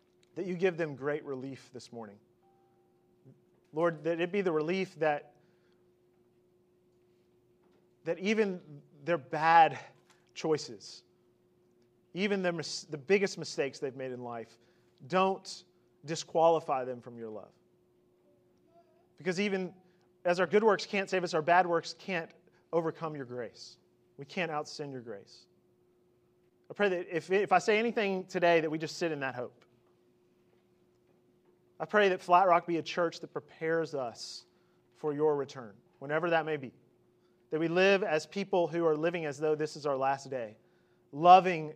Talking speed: 150 wpm